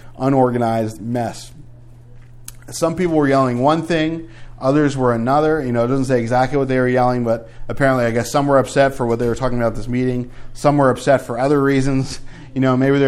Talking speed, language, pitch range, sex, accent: 215 wpm, English, 120-150 Hz, male, American